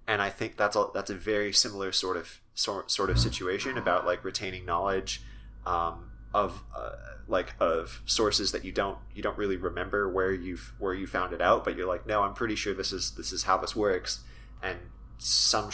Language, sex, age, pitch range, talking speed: English, male, 20-39, 85-100 Hz, 210 wpm